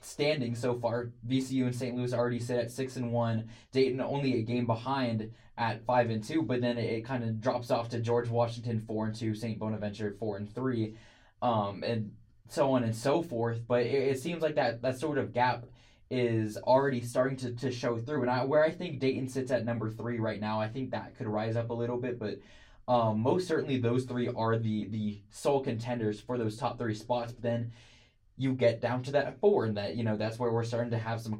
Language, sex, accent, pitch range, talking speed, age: English, male, American, 110-130 Hz, 230 wpm, 20-39